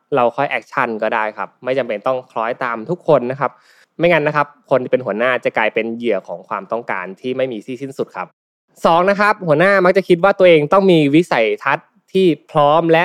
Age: 20-39